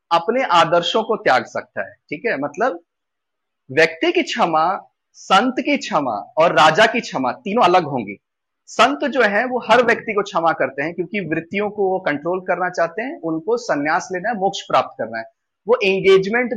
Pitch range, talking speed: 165-220 Hz, 180 wpm